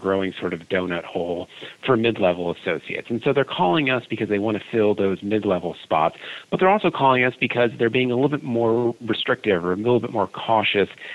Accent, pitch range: American, 100-120 Hz